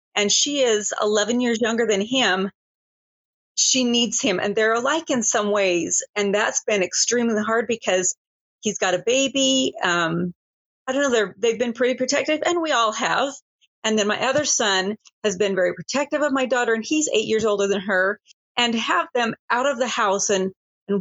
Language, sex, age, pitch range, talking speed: English, female, 40-59, 200-250 Hz, 195 wpm